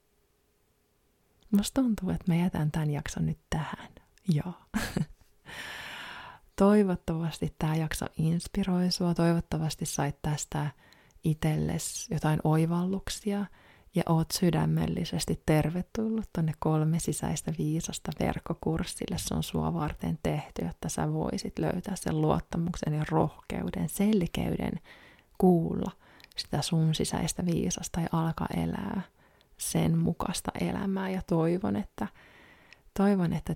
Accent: native